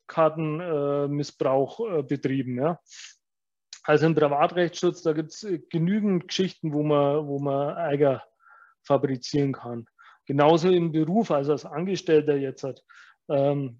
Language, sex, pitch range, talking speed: German, male, 140-165 Hz, 125 wpm